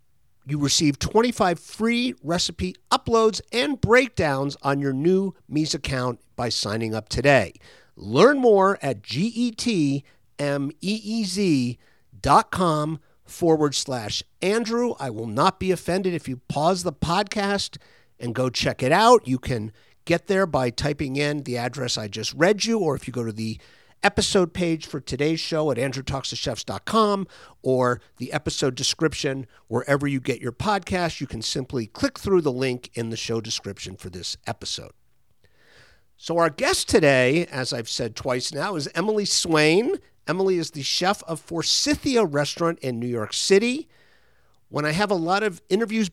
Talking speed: 155 wpm